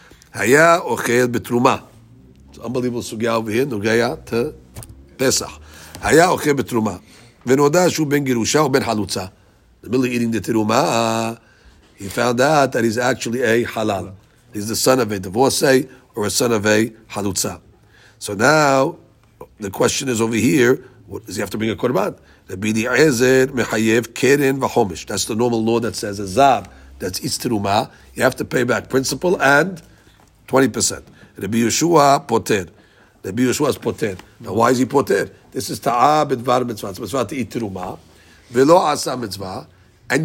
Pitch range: 105-135 Hz